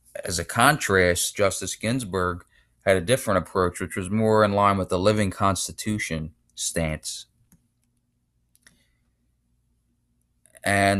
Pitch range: 80-100 Hz